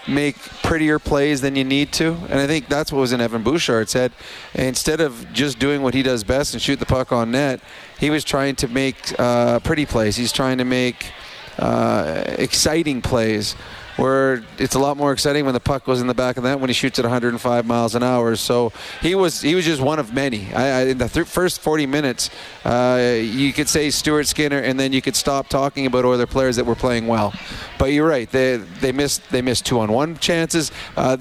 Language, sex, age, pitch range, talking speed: English, male, 30-49, 125-145 Hz, 225 wpm